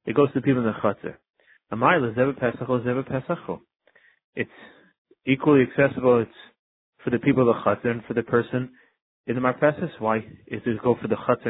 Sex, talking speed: male, 170 wpm